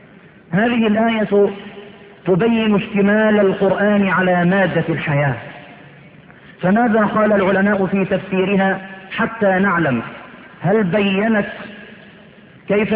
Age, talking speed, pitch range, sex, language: 50-69, 85 wpm, 175-210 Hz, male, Arabic